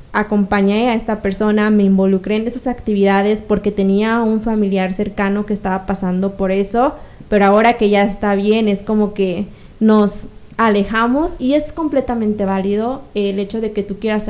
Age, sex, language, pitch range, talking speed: 20-39, female, Spanish, 200-235 Hz, 170 wpm